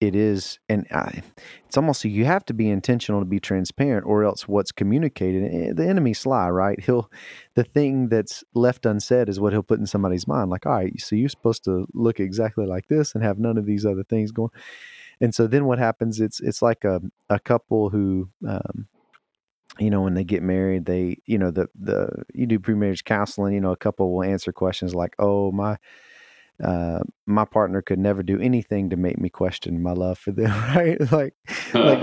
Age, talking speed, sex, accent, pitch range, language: 30-49, 205 wpm, male, American, 95-125 Hz, English